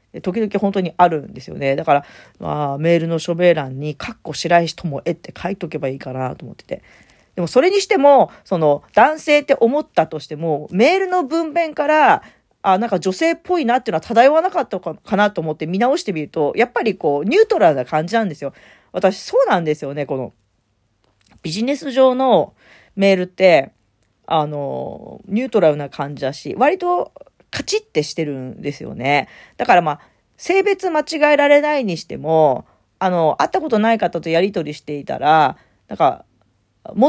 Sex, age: female, 40-59